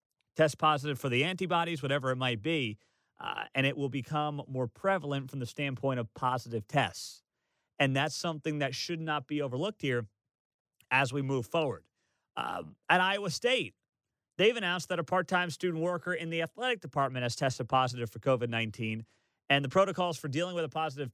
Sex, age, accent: male, 30-49, American